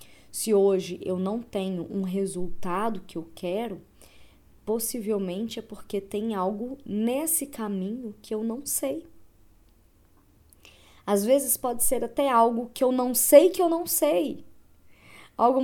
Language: Portuguese